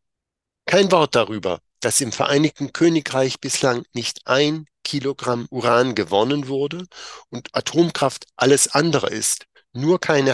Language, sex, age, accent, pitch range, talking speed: German, male, 50-69, German, 130-160 Hz, 120 wpm